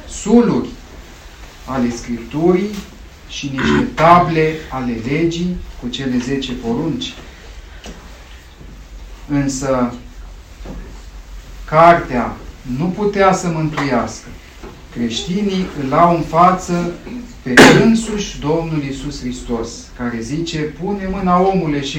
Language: Romanian